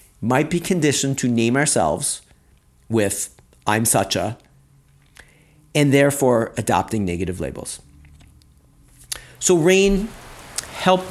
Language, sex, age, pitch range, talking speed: English, male, 40-59, 110-160 Hz, 95 wpm